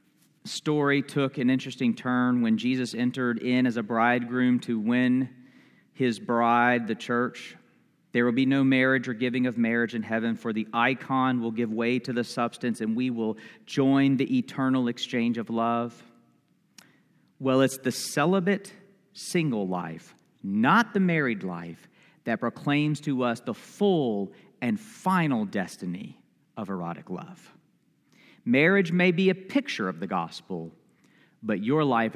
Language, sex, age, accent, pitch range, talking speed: English, male, 40-59, American, 115-150 Hz, 150 wpm